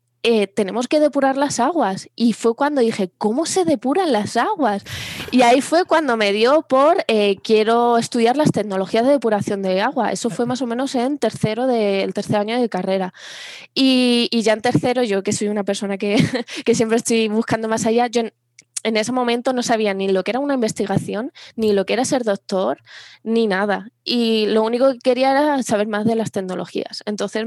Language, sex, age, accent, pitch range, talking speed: Spanish, female, 20-39, Spanish, 200-245 Hz, 200 wpm